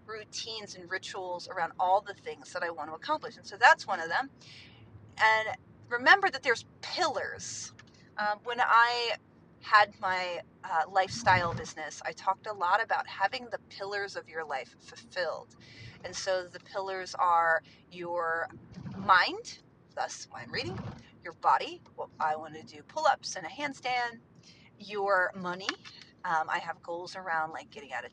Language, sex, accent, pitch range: English, female, American, 170-230 Hz